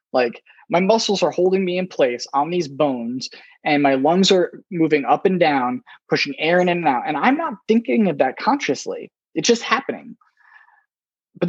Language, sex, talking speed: English, male, 185 wpm